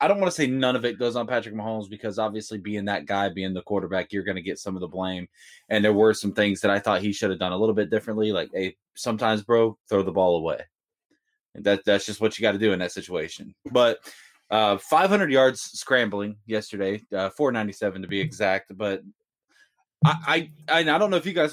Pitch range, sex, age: 100-125 Hz, male, 20-39